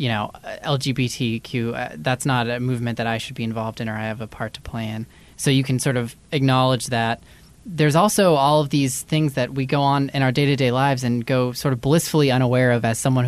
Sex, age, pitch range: male, 20-39, 125-165 Hz